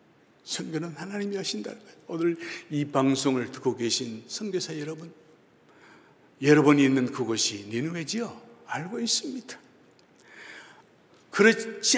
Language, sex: Korean, male